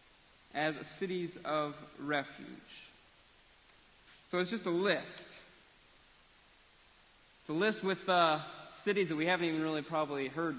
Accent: American